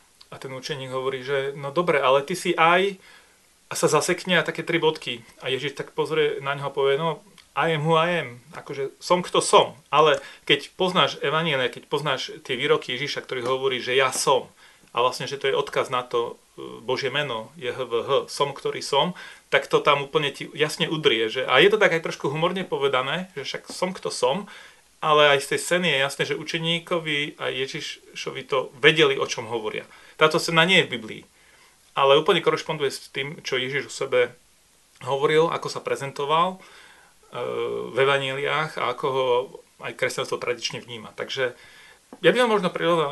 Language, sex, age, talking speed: Slovak, male, 30-49, 190 wpm